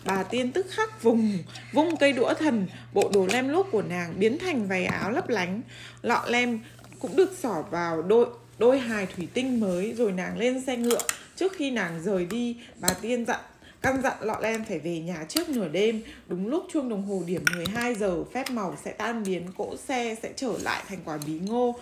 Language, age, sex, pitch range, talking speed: Vietnamese, 20-39, female, 185-245 Hz, 215 wpm